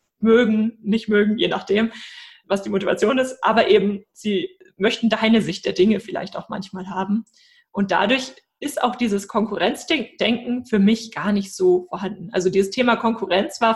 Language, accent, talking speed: German, German, 165 wpm